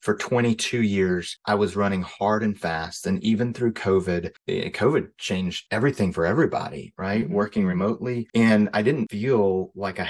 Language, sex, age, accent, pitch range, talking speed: English, male, 30-49, American, 95-110 Hz, 160 wpm